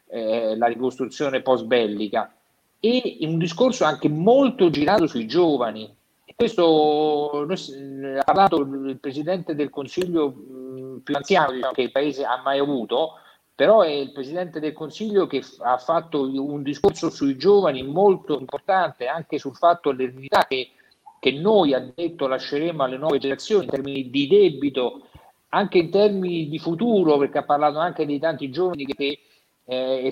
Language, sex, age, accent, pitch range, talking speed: Italian, male, 50-69, native, 130-170 Hz, 145 wpm